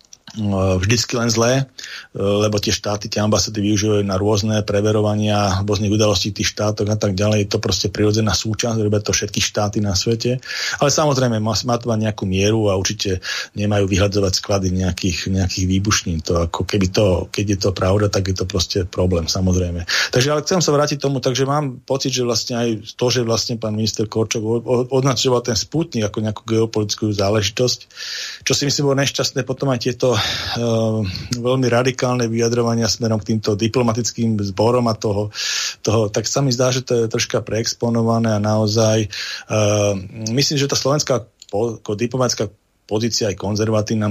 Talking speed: 160 wpm